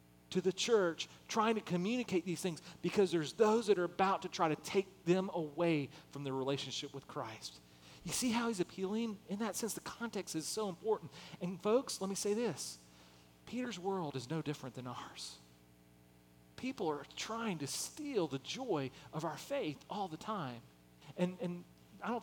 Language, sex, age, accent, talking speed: English, male, 40-59, American, 185 wpm